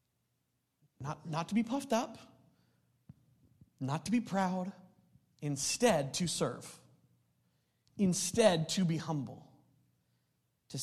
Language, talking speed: English, 100 wpm